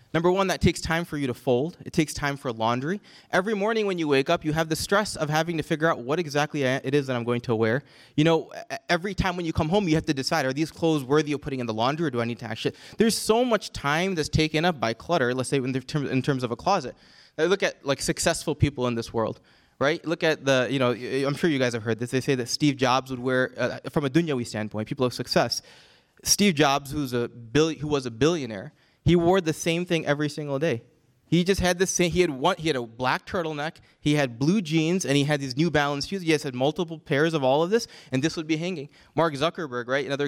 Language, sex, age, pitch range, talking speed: English, male, 20-39, 135-170 Hz, 265 wpm